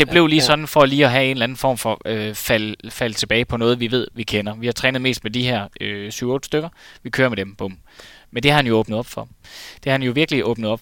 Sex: male